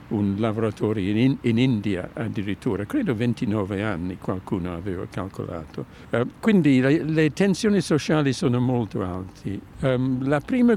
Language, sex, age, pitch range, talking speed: Italian, male, 60-79, 110-155 Hz, 135 wpm